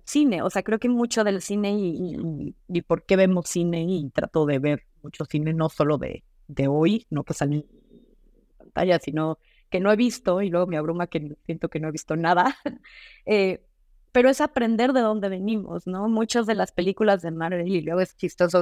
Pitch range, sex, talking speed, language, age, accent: 170-220 Hz, female, 210 wpm, Spanish, 20-39, Mexican